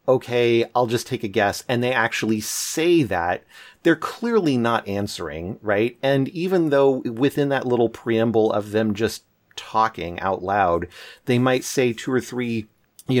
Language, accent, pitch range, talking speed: English, American, 100-125 Hz, 165 wpm